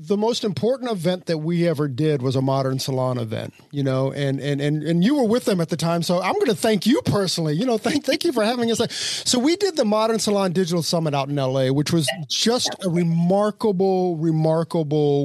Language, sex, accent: English, male, American